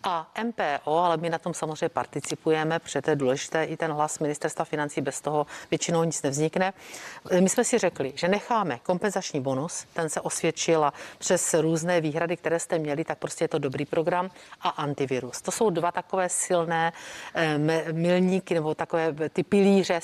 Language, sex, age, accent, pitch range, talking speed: Czech, female, 40-59, native, 155-190 Hz, 170 wpm